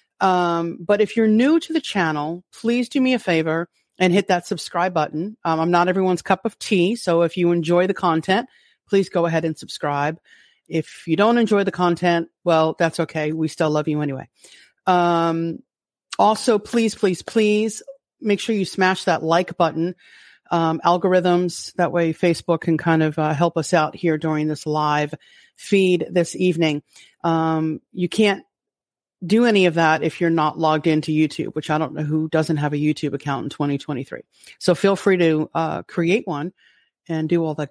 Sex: female